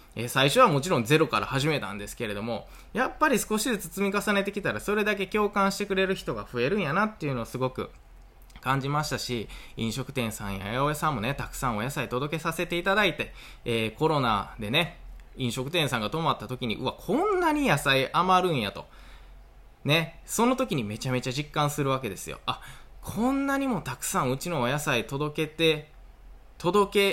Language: Japanese